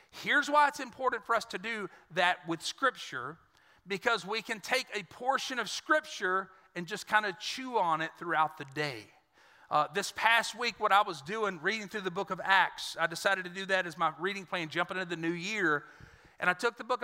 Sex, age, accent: male, 40-59, American